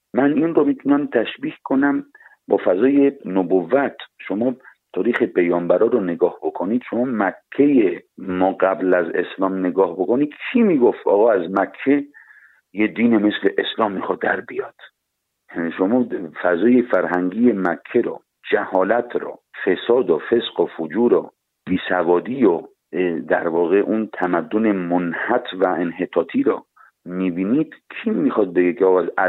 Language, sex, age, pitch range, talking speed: Persian, male, 50-69, 95-155 Hz, 130 wpm